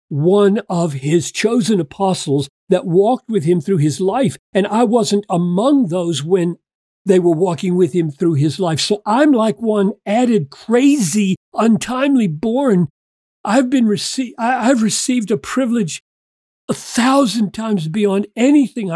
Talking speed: 150 wpm